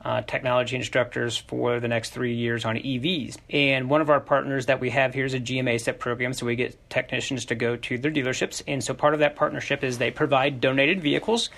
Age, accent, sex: 30-49, American, male